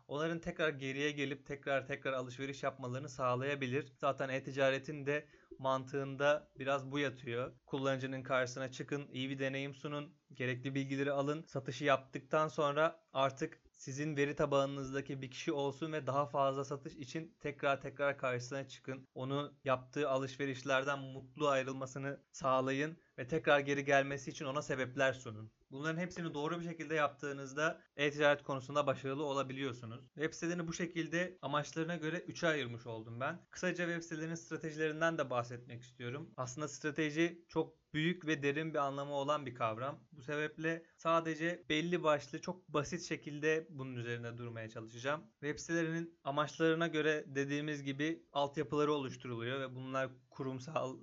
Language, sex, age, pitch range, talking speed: Turkish, male, 30-49, 135-155 Hz, 140 wpm